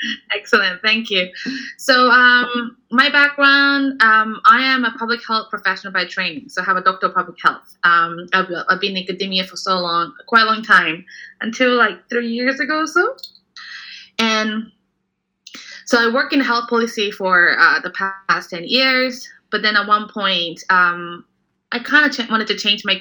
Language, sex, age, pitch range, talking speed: English, female, 20-39, 180-240 Hz, 185 wpm